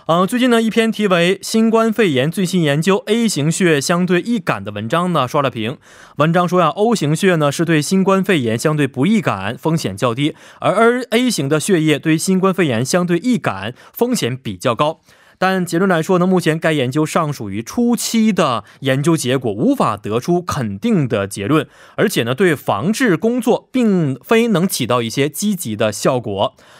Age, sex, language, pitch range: 20-39, male, Korean, 130-185 Hz